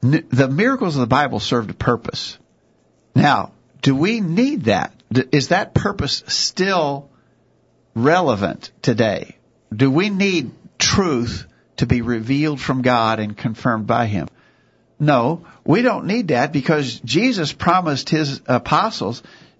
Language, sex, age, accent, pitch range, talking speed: English, male, 50-69, American, 125-170 Hz, 130 wpm